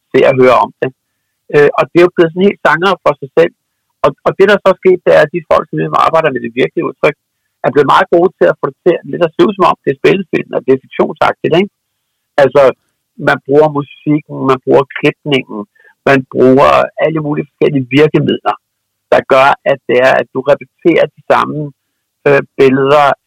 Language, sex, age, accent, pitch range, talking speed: Danish, male, 60-79, native, 125-170 Hz, 210 wpm